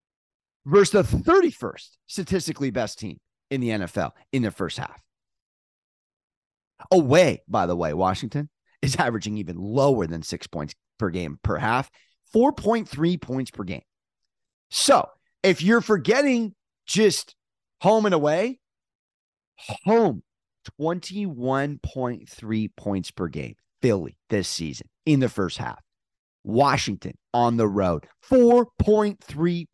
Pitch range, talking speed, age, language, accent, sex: 135-215 Hz, 115 wpm, 30-49, English, American, male